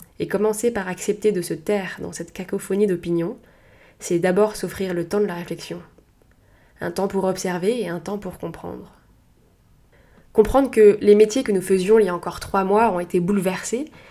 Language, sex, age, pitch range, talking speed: French, female, 20-39, 180-210 Hz, 185 wpm